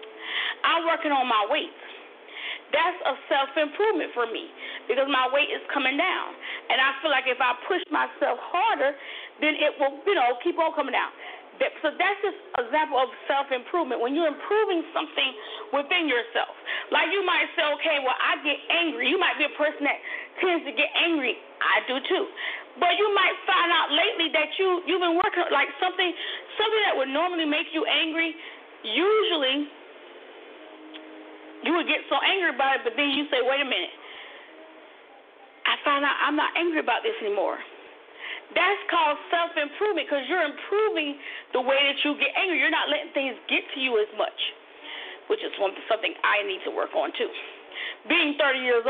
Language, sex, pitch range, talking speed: English, female, 280-385 Hz, 180 wpm